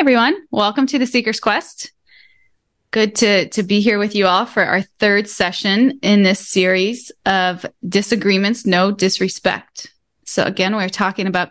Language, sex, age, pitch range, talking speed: English, female, 20-39, 185-235 Hz, 155 wpm